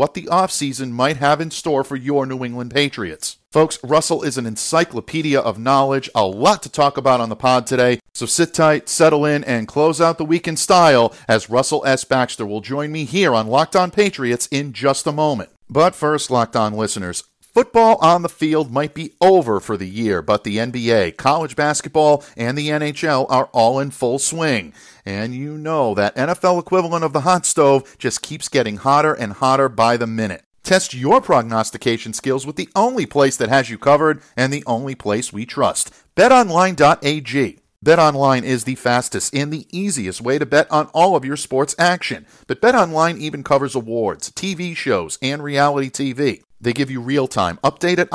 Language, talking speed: English, 190 wpm